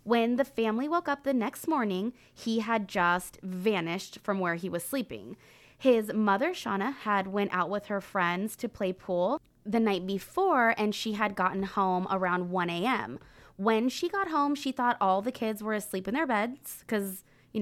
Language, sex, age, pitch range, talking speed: English, female, 20-39, 185-230 Hz, 190 wpm